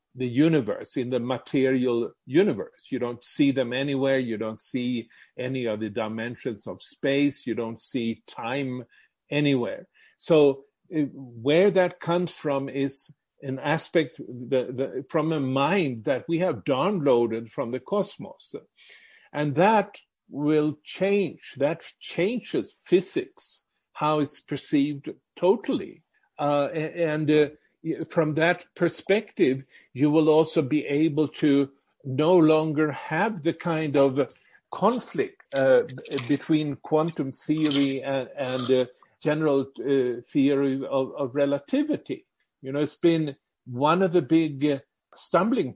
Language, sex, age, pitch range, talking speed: English, male, 50-69, 130-160 Hz, 130 wpm